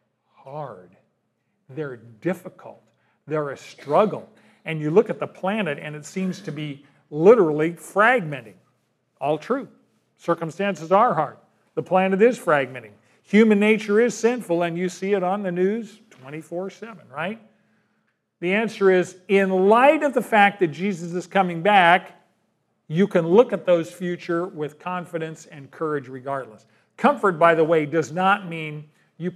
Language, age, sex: English, 50-69, male